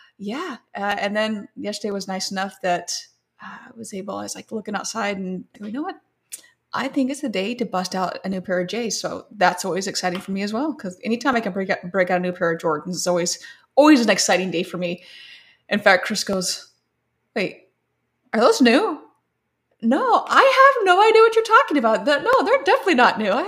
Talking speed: 225 wpm